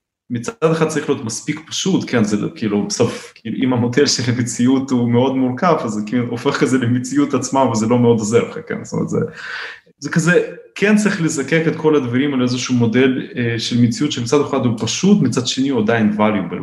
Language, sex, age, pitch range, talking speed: Hebrew, male, 30-49, 125-175 Hz, 205 wpm